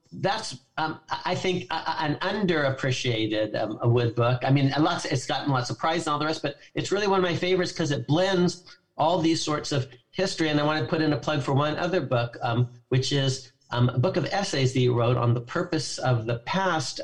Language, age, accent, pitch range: English, 50-69, American, 125-160 Hz